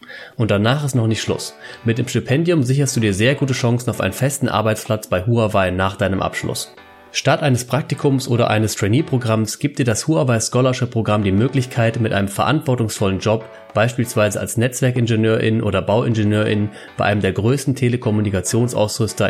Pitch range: 105-125 Hz